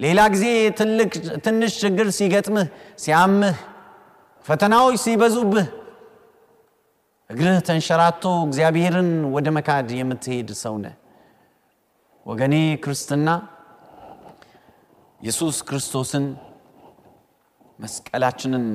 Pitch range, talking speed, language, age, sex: 125-185 Hz, 75 wpm, Amharic, 30-49, male